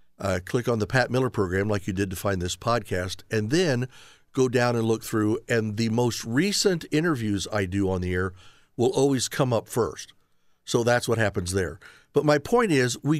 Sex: male